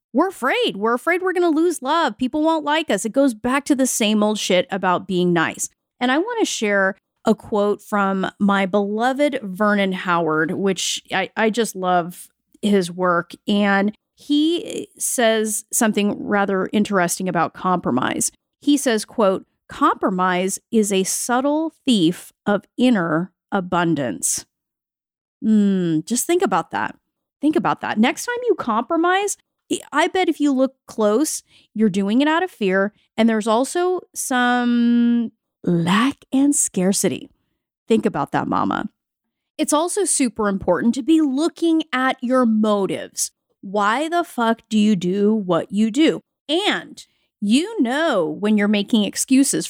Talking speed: 145 wpm